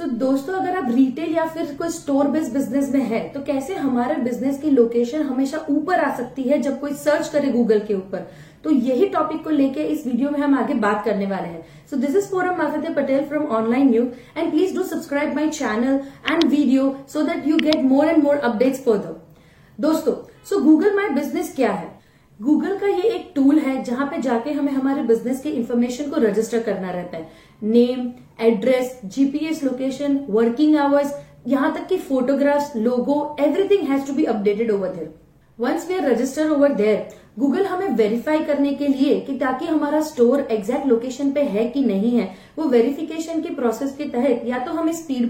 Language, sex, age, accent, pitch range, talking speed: Hindi, female, 30-49, native, 240-305 Hz, 190 wpm